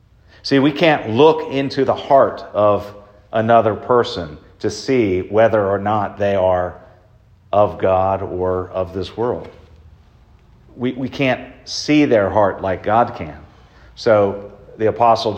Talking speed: 135 wpm